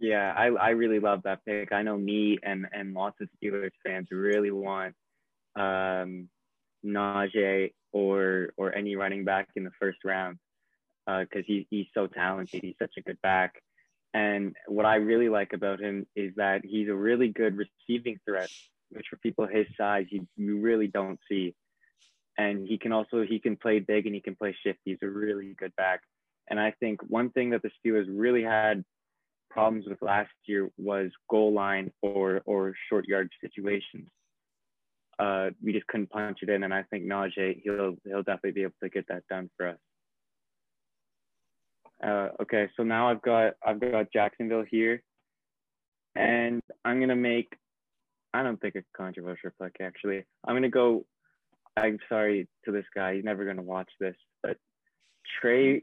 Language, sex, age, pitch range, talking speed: English, male, 20-39, 95-110 Hz, 175 wpm